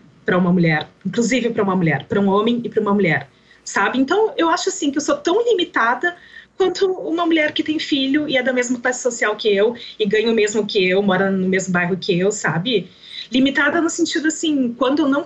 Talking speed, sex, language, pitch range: 230 wpm, female, Portuguese, 195-275 Hz